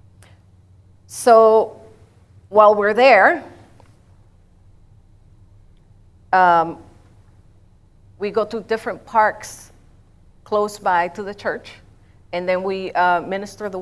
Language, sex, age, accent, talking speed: English, female, 40-59, American, 90 wpm